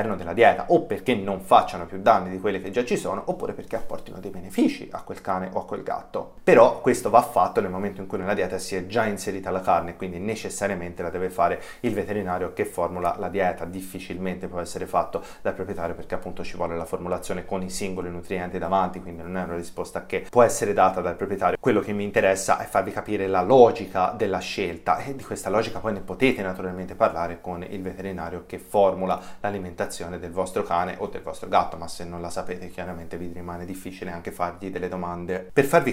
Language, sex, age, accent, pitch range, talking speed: Italian, male, 30-49, native, 90-100 Hz, 215 wpm